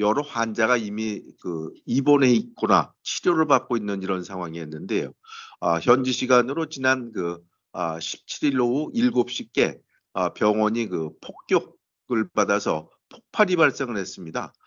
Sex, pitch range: male, 100-130 Hz